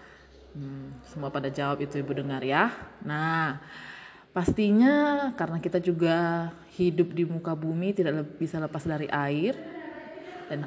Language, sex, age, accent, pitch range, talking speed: Indonesian, female, 20-39, native, 150-185 Hz, 130 wpm